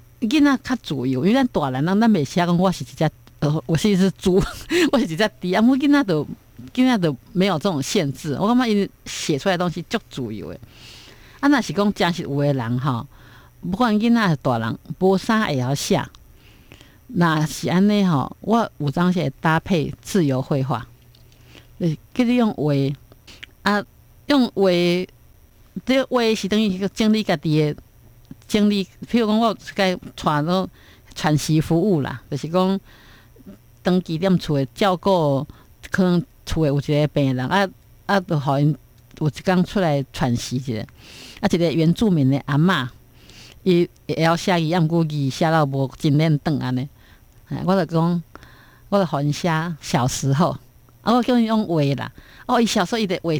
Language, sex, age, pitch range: Chinese, female, 50-69, 140-195 Hz